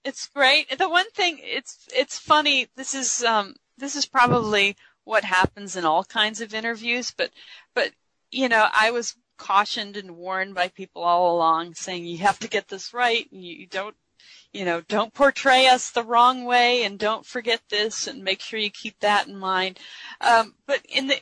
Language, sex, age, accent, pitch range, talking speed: English, female, 30-49, American, 185-240 Hz, 190 wpm